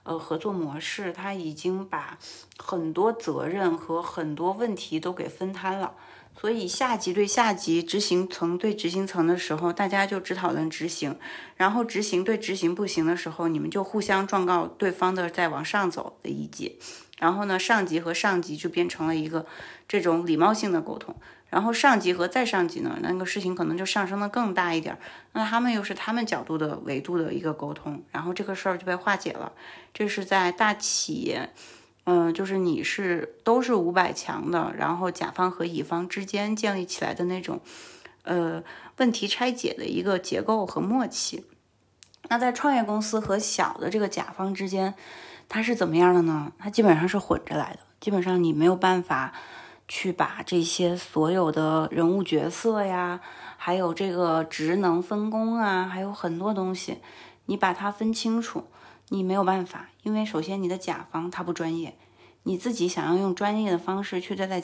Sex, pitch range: female, 170-205 Hz